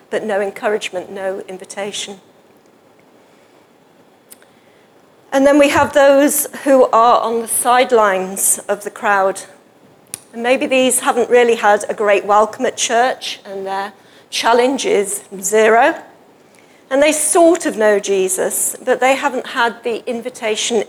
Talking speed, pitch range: 130 wpm, 205-270 Hz